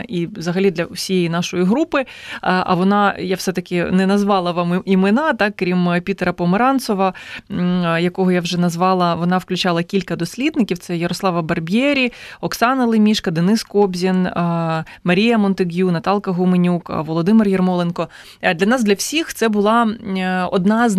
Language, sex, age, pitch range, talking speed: English, female, 20-39, 180-210 Hz, 135 wpm